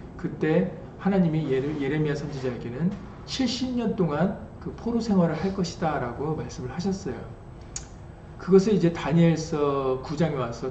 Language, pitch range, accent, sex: Korean, 130-185 Hz, native, male